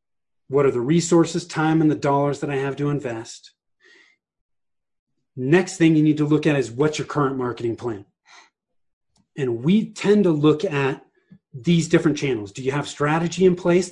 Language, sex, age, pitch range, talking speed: English, male, 30-49, 135-170 Hz, 175 wpm